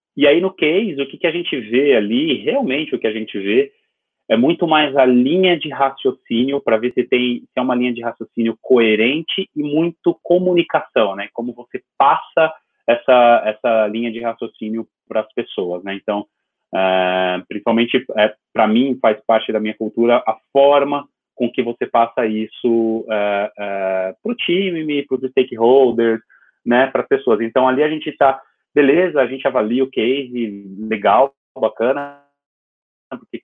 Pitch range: 105-135 Hz